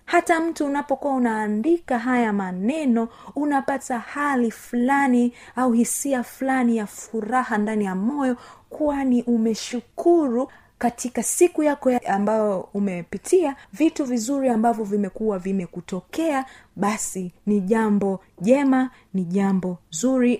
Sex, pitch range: female, 200-265 Hz